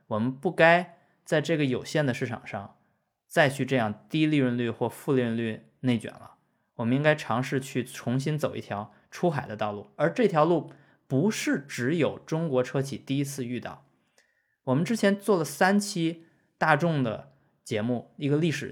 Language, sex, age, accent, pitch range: Chinese, male, 20-39, native, 130-185 Hz